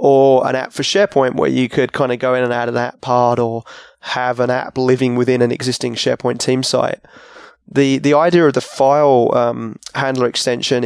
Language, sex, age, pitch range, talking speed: English, male, 20-39, 125-145 Hz, 205 wpm